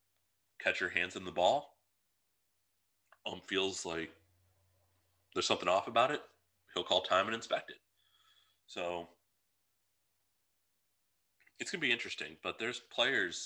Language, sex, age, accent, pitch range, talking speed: English, male, 30-49, American, 90-95 Hz, 125 wpm